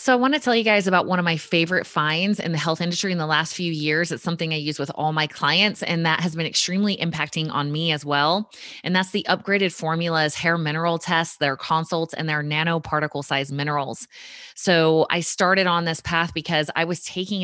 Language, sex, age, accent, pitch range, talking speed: English, female, 20-39, American, 150-175 Hz, 225 wpm